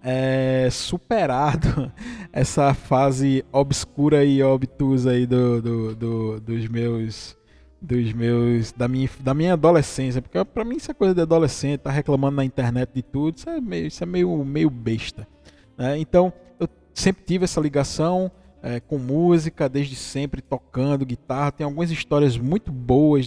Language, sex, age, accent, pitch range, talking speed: Portuguese, male, 20-39, Brazilian, 130-170 Hz, 155 wpm